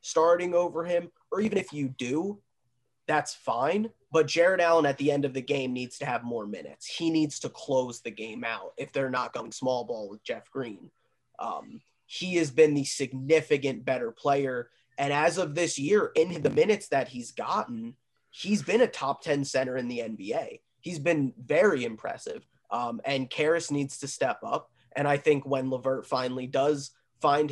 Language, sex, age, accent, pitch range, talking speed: English, male, 20-39, American, 130-165 Hz, 190 wpm